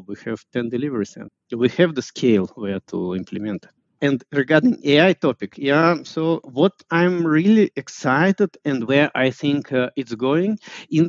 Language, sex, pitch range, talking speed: English, male, 125-165 Hz, 170 wpm